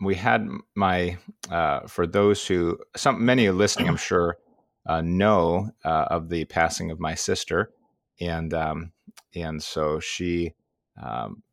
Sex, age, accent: male, 30-49, American